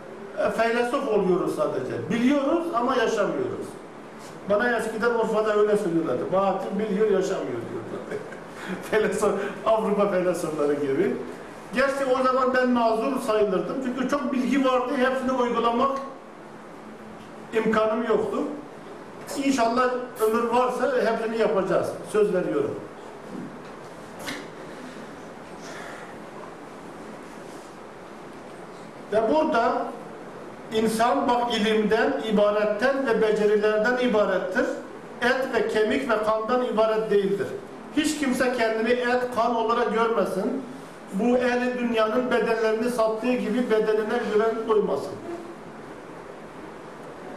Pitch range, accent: 215-250 Hz, native